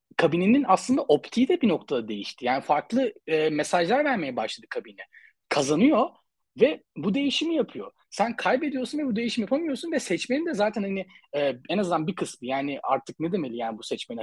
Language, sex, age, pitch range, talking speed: Turkish, male, 30-49, 160-250 Hz, 175 wpm